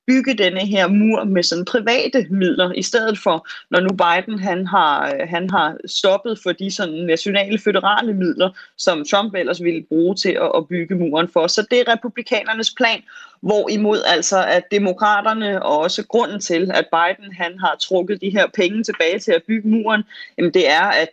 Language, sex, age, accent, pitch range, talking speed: Danish, female, 30-49, native, 175-215 Hz, 185 wpm